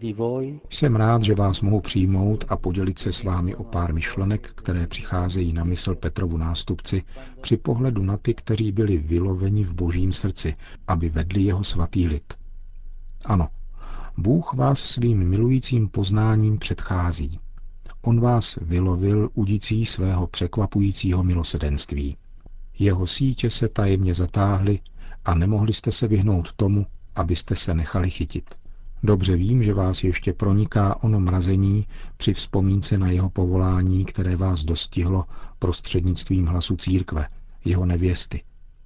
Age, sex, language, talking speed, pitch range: 50-69, male, Czech, 130 wpm, 85-105 Hz